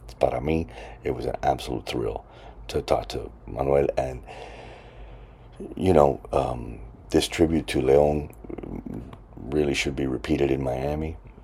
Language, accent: English, American